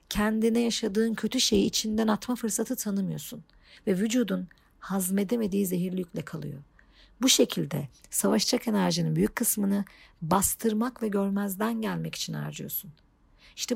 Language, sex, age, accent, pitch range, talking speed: Turkish, female, 50-69, native, 180-225 Hz, 120 wpm